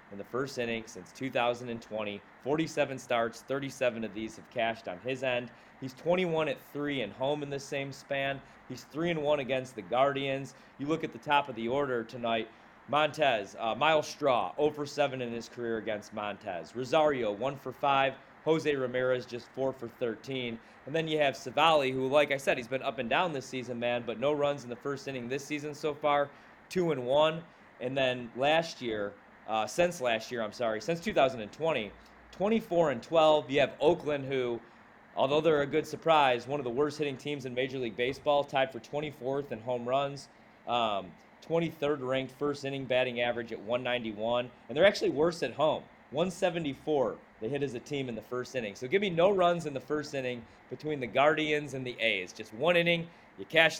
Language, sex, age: English, male, 30-49